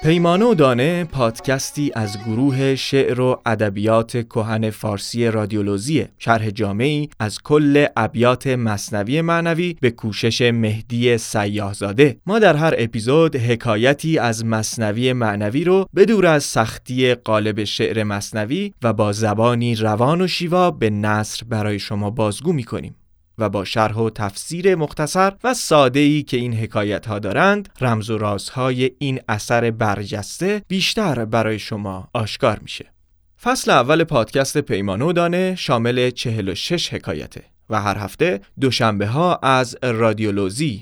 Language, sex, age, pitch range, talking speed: Persian, male, 30-49, 110-150 Hz, 135 wpm